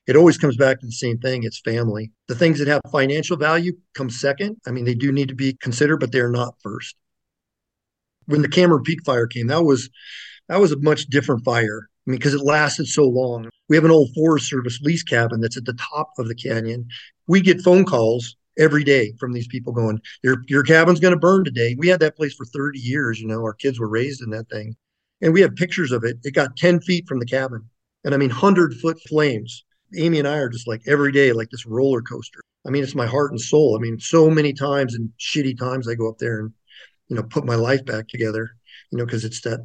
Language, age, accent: English, 50-69, American